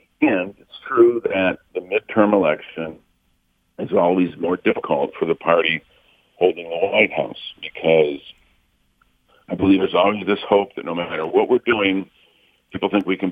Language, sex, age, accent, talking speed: English, male, 60-79, American, 160 wpm